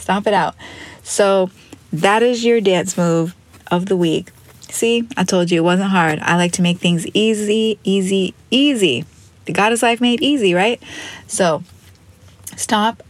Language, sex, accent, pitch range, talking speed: English, female, American, 120-195 Hz, 160 wpm